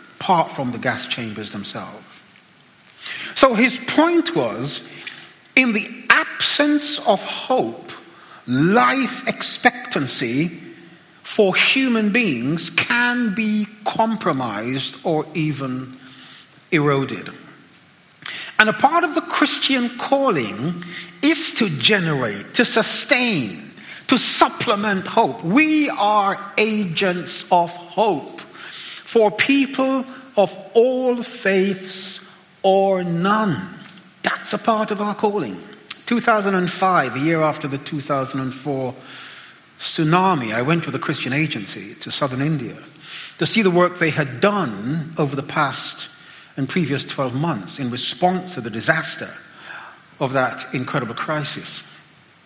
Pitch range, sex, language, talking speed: 145-225 Hz, male, English, 110 wpm